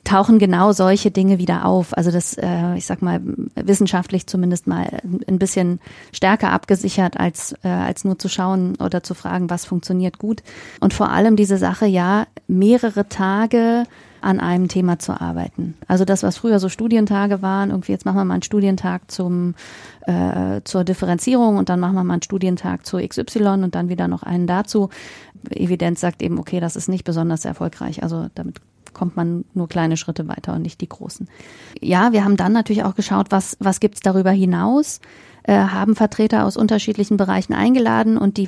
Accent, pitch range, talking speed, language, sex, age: German, 175-200 Hz, 185 wpm, German, female, 30-49